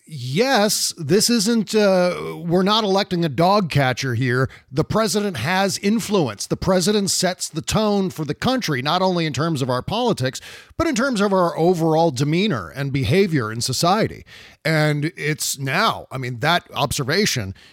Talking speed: 165 wpm